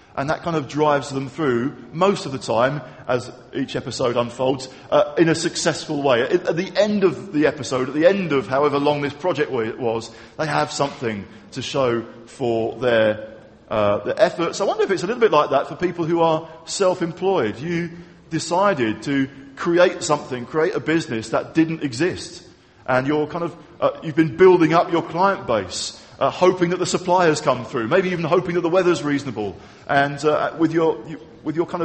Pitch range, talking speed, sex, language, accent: 145-190 Hz, 195 wpm, male, English, British